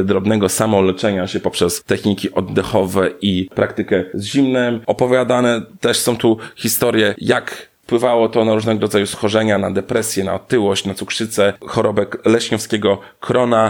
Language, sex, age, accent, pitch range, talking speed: Polish, male, 30-49, native, 105-125 Hz, 130 wpm